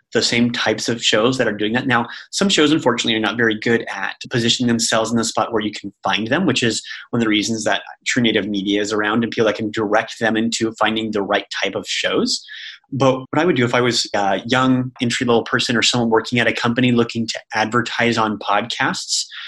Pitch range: 110-125 Hz